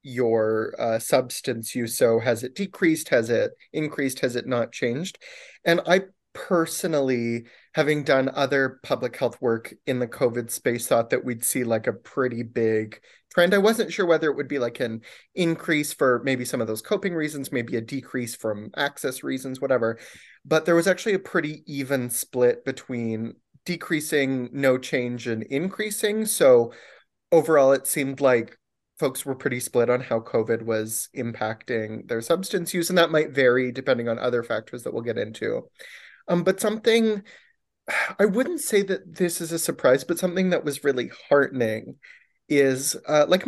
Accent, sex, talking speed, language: American, male, 170 wpm, English